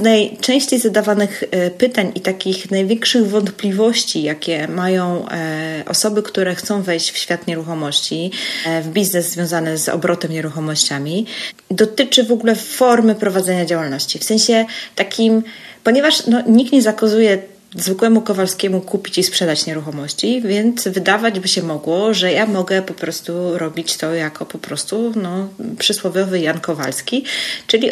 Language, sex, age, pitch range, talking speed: Polish, female, 30-49, 175-225 Hz, 130 wpm